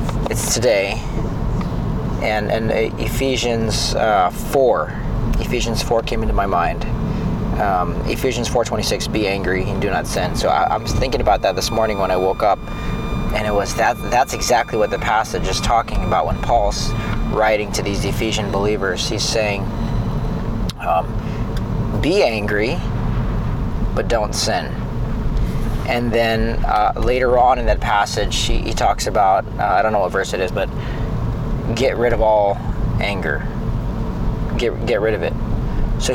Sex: male